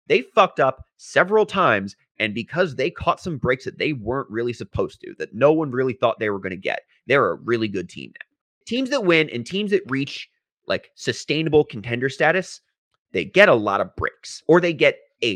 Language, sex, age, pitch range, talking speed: English, male, 30-49, 125-195 Hz, 210 wpm